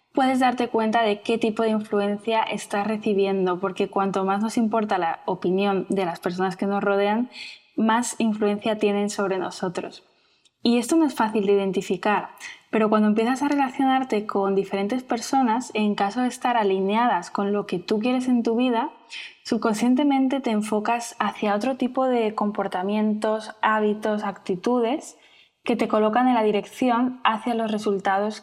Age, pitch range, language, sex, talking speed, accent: 10-29, 200-235 Hz, Spanish, female, 160 wpm, Spanish